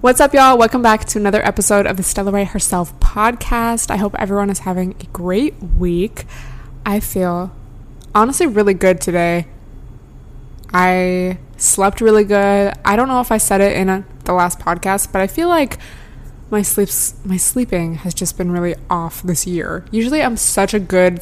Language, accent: English, American